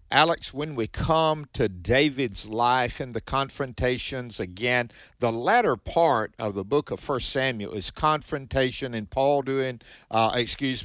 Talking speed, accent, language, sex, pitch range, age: 150 wpm, American, English, male, 110-145 Hz, 50-69